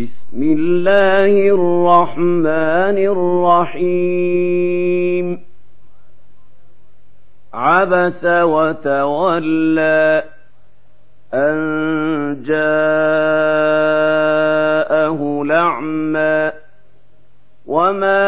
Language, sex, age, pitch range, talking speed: Arabic, male, 50-69, 145-175 Hz, 35 wpm